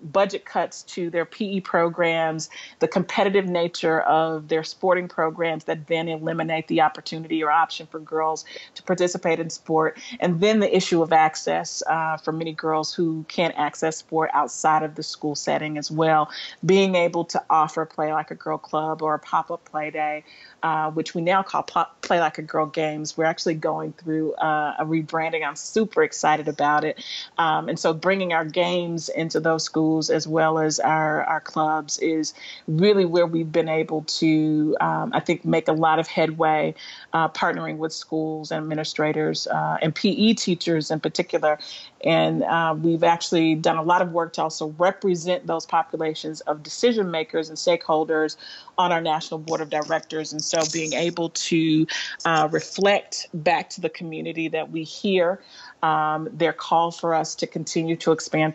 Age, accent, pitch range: 30-49, American, 155-170 Hz